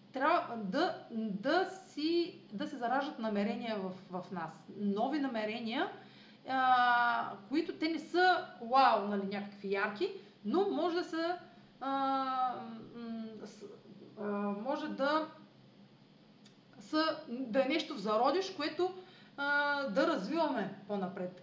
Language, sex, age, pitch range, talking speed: Bulgarian, female, 30-49, 200-305 Hz, 115 wpm